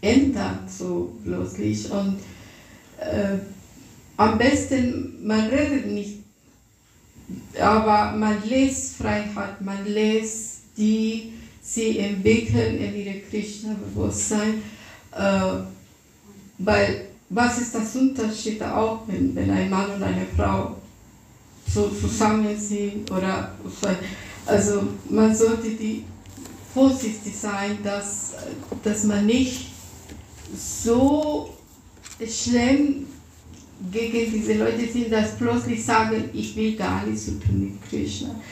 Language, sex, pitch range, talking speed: German, female, 195-235 Hz, 105 wpm